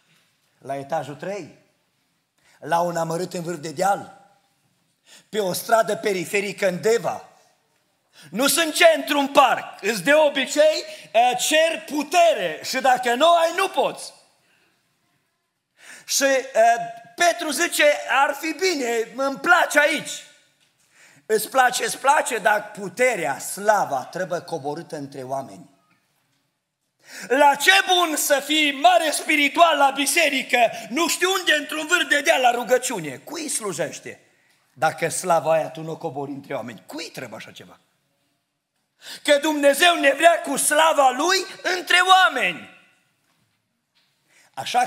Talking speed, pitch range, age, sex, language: 125 wpm, 195-315 Hz, 40-59, male, Romanian